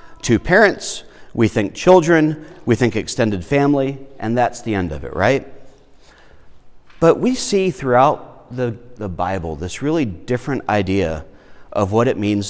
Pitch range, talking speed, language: 115-160 Hz, 150 wpm, English